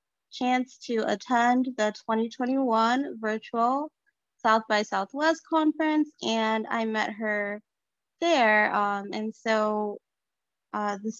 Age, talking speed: 20-39, 105 wpm